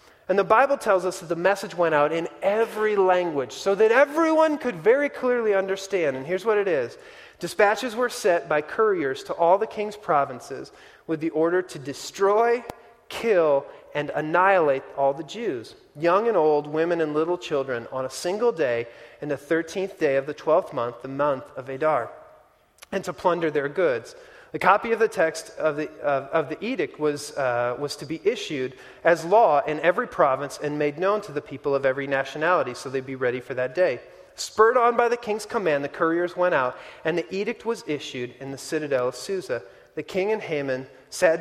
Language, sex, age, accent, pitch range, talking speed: English, male, 30-49, American, 150-220 Hz, 200 wpm